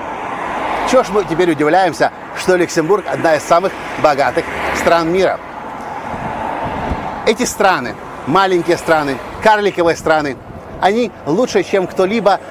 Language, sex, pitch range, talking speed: Russian, male, 165-210 Hz, 110 wpm